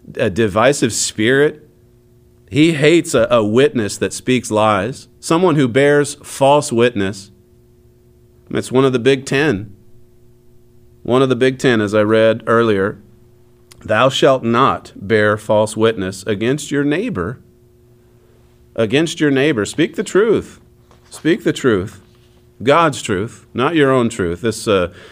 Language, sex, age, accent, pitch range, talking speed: English, male, 40-59, American, 110-145 Hz, 135 wpm